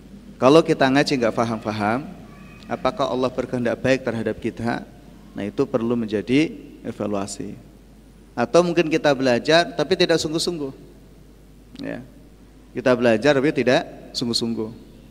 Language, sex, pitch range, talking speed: Indonesian, male, 120-155 Hz, 115 wpm